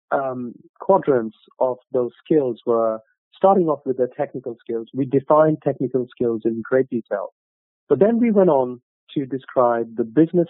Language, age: English, 40-59